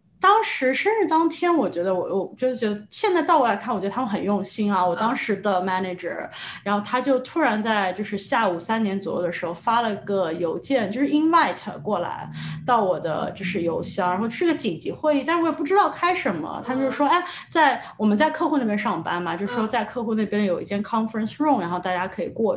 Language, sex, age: Chinese, female, 20-39